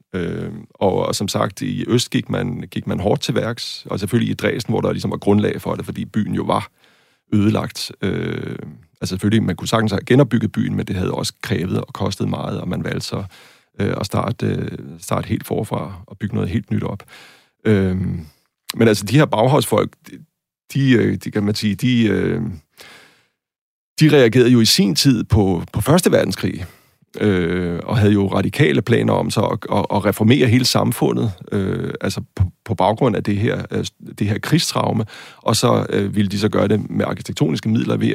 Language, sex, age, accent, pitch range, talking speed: Danish, male, 30-49, native, 100-120 Hz, 195 wpm